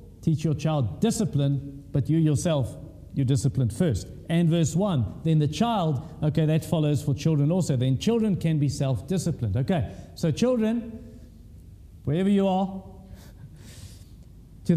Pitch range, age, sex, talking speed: 130-195 Hz, 50-69, male, 140 wpm